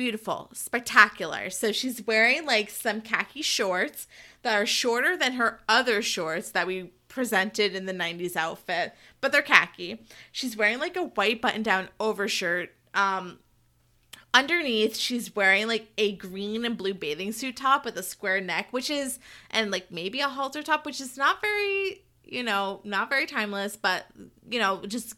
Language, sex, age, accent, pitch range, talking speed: English, female, 20-39, American, 195-250 Hz, 165 wpm